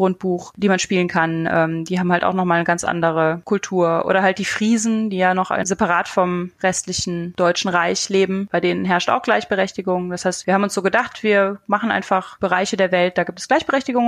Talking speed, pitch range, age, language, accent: 210 wpm, 185-220 Hz, 30-49, German, German